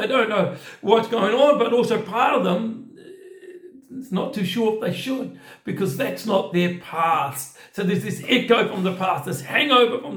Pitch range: 150-230 Hz